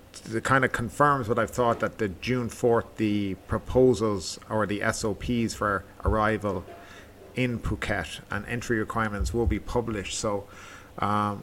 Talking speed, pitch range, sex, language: 145 wpm, 100-125 Hz, male, English